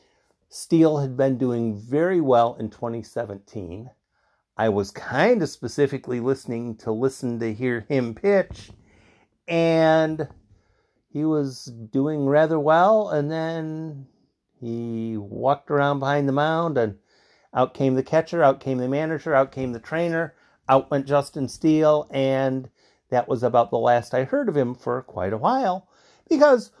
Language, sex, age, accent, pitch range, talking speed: English, male, 50-69, American, 120-155 Hz, 150 wpm